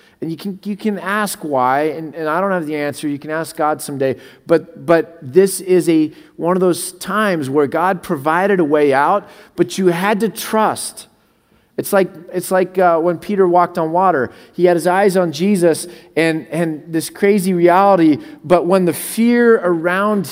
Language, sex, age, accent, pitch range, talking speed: English, male, 30-49, American, 145-190 Hz, 200 wpm